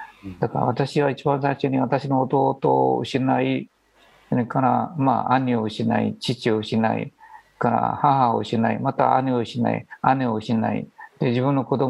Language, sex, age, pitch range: Japanese, male, 50-69, 115-140 Hz